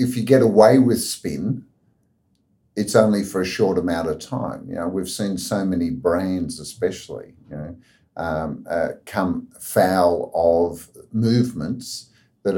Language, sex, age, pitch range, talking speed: English, male, 50-69, 90-105 Hz, 150 wpm